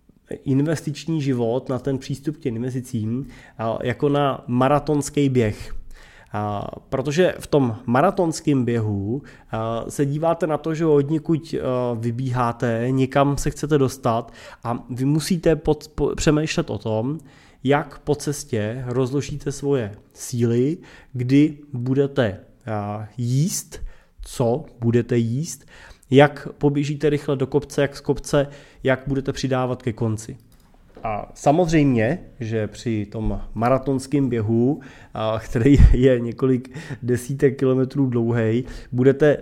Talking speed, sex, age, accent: 115 wpm, male, 20-39, native